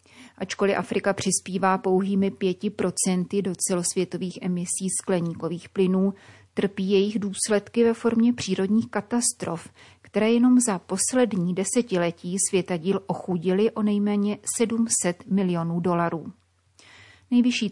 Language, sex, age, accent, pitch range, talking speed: Czech, female, 30-49, native, 175-205 Hz, 105 wpm